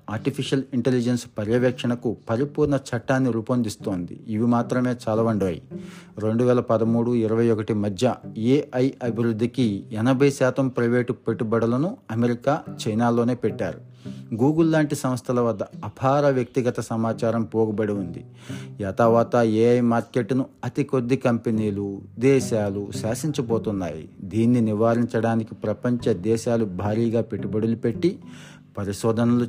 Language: Telugu